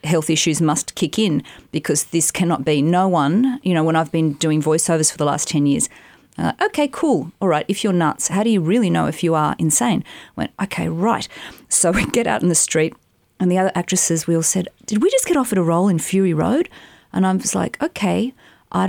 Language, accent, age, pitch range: English, Australian, 40-59, 160-205 Hz